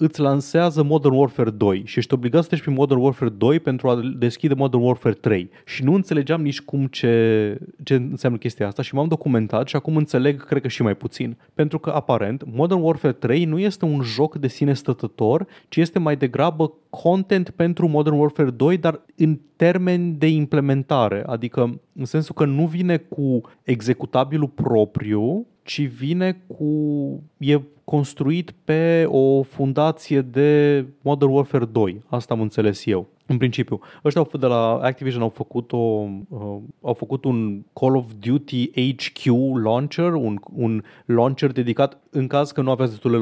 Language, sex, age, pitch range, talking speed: Romanian, male, 30-49, 120-150 Hz, 165 wpm